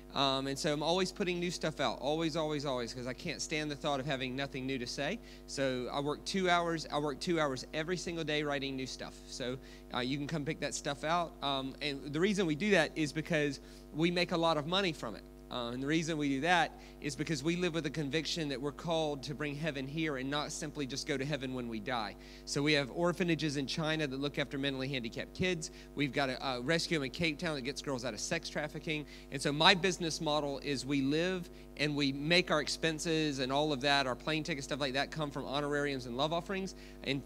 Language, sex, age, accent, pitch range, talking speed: English, male, 30-49, American, 130-165 Hz, 245 wpm